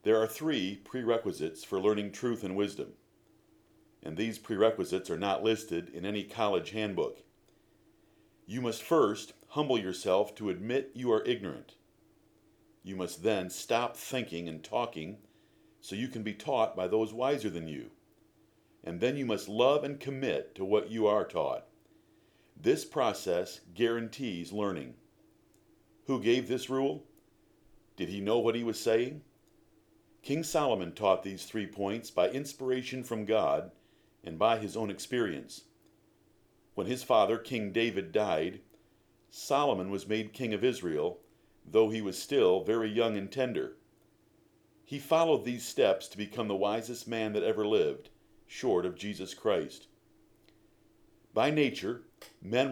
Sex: male